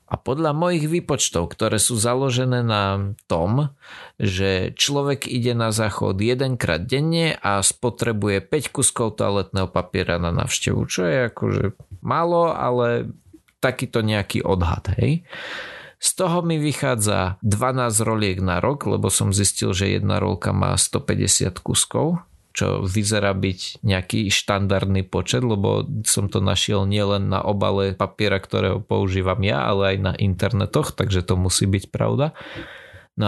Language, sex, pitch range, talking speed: Slovak, male, 100-130 Hz, 140 wpm